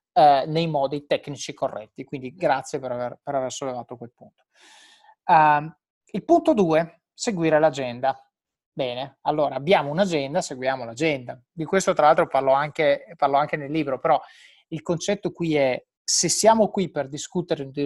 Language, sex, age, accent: Italian, male, 30-49, native